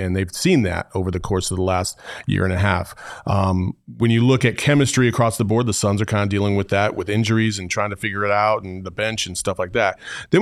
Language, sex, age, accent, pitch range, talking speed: English, male, 40-59, American, 100-125 Hz, 270 wpm